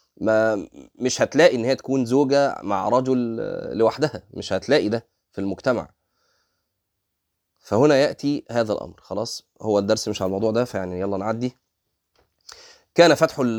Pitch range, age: 90-120 Hz, 20-39